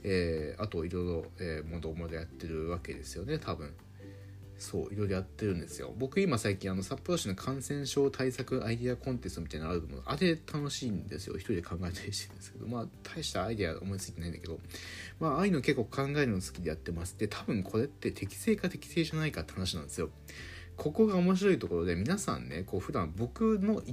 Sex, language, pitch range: male, Japanese, 90-145 Hz